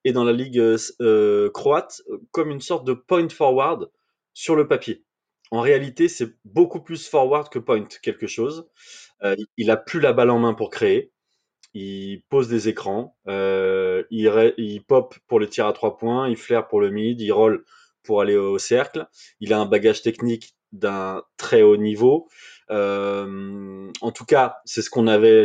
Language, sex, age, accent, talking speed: French, male, 20-39, French, 185 wpm